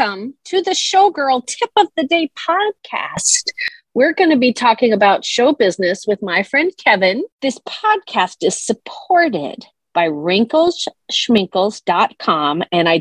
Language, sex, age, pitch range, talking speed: English, female, 40-59, 180-250 Hz, 130 wpm